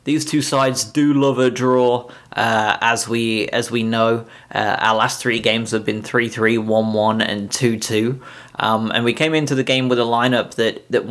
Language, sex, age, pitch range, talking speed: English, male, 20-39, 110-130 Hz, 195 wpm